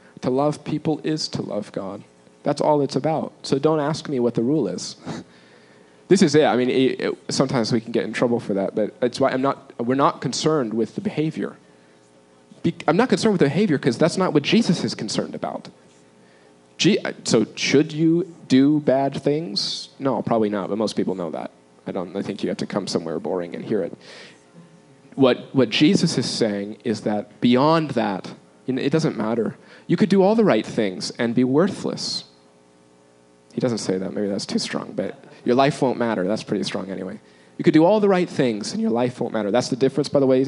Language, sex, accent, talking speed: English, male, American, 215 wpm